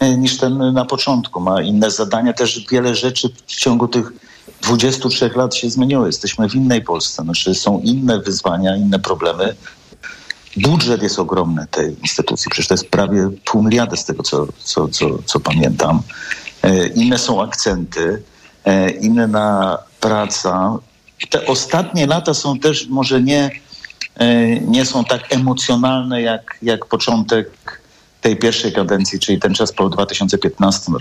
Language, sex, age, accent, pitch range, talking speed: Polish, male, 50-69, native, 100-125 Hz, 140 wpm